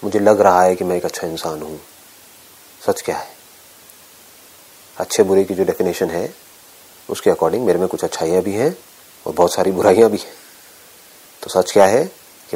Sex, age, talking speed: male, 30-49, 180 wpm